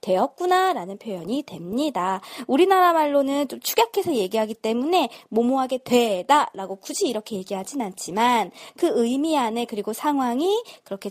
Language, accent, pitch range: Korean, native, 215-345 Hz